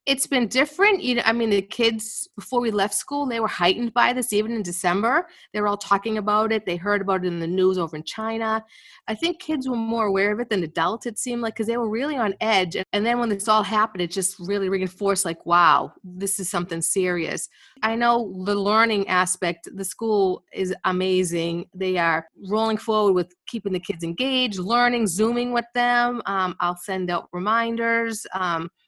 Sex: female